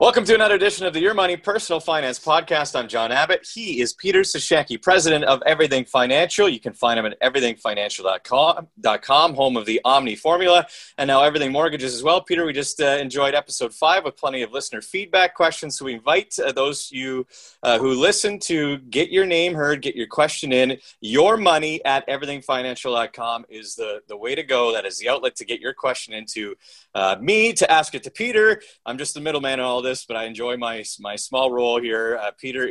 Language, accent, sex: English, American, male